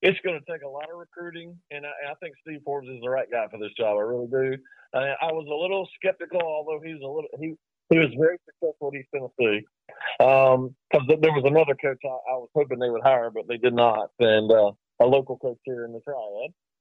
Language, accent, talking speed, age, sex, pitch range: English, American, 245 wpm, 40-59, male, 130-170 Hz